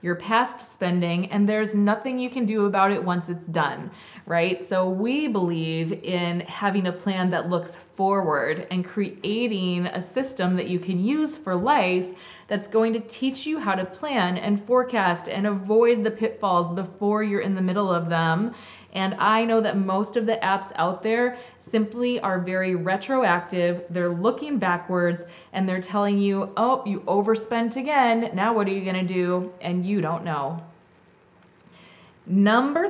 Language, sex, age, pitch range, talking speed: English, female, 20-39, 180-230 Hz, 170 wpm